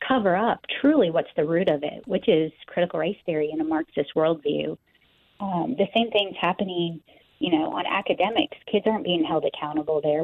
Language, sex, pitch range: English, female, 160-210 Hz